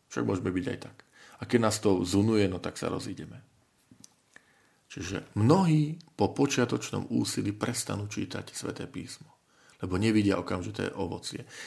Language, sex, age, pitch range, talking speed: Slovak, male, 40-59, 95-125 Hz, 140 wpm